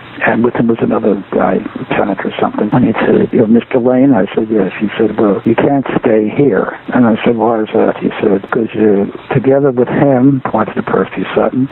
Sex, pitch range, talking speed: male, 130-175 Hz, 225 wpm